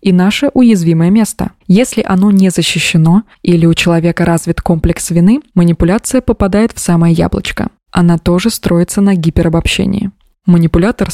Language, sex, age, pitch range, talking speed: Russian, female, 20-39, 170-205 Hz, 135 wpm